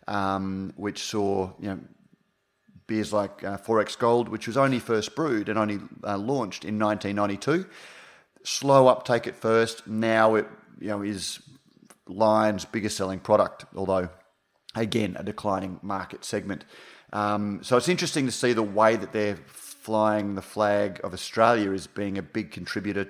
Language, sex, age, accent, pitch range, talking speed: English, male, 30-49, Australian, 100-110 Hz, 155 wpm